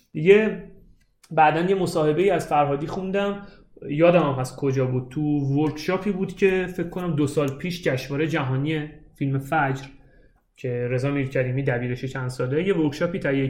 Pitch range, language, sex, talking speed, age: 135-170 Hz, Persian, male, 155 wpm, 30-49